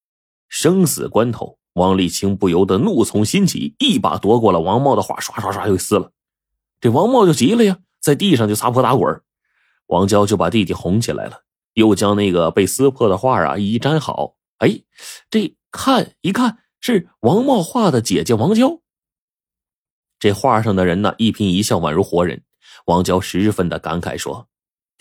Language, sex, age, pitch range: Chinese, male, 30-49, 95-145 Hz